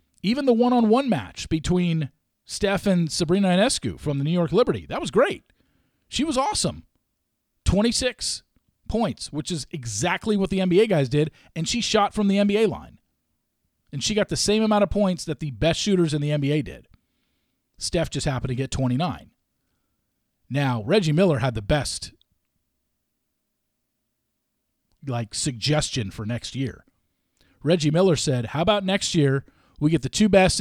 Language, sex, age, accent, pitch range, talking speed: English, male, 40-59, American, 130-170 Hz, 160 wpm